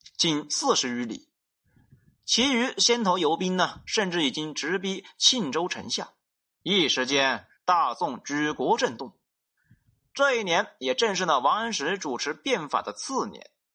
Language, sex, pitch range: Chinese, male, 155-245 Hz